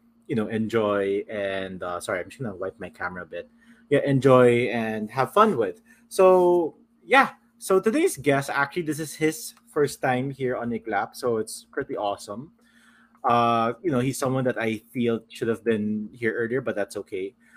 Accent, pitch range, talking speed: Filipino, 125-165 Hz, 190 wpm